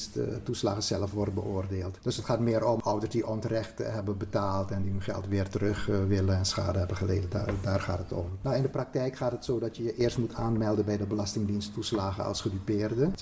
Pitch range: 100-120 Hz